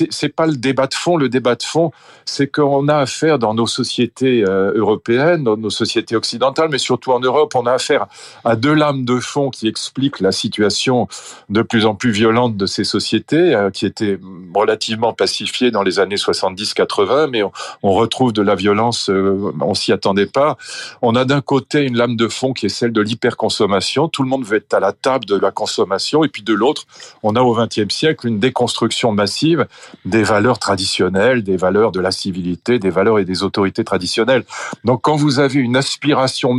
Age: 40-59